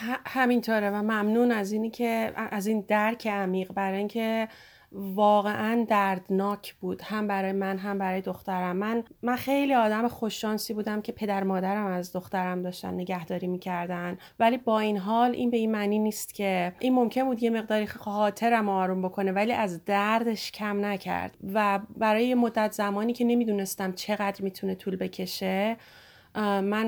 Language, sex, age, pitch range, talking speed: Persian, female, 30-49, 190-225 Hz, 155 wpm